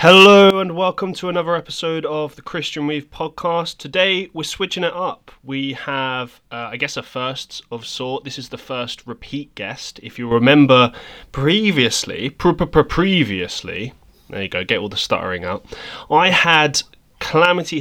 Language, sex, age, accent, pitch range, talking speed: English, male, 20-39, British, 115-160 Hz, 160 wpm